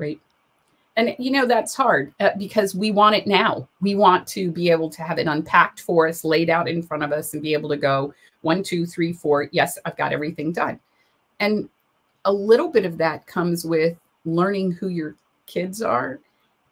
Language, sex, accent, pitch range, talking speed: English, female, American, 160-200 Hz, 195 wpm